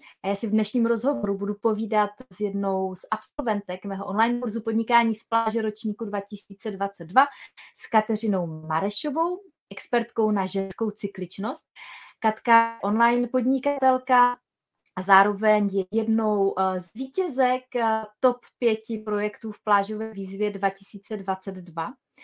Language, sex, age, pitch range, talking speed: Czech, female, 20-39, 200-250 Hz, 115 wpm